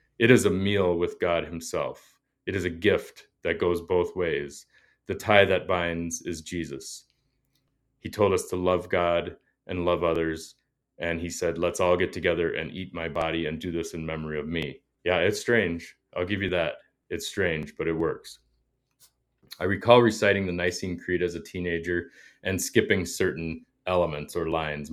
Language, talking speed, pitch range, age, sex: English, 180 wpm, 85-100 Hz, 30-49, male